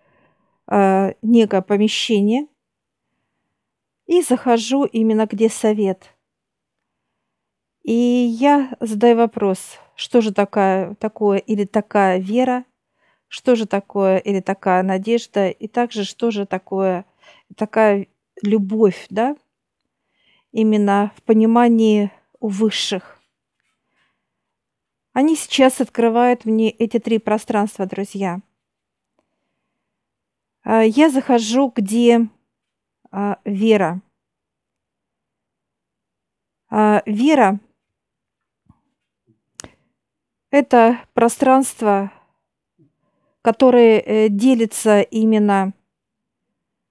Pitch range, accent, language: 200-240 Hz, native, Russian